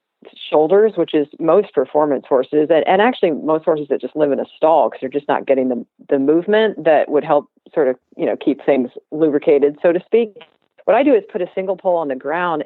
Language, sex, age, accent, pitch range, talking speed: English, female, 40-59, American, 145-195 Hz, 230 wpm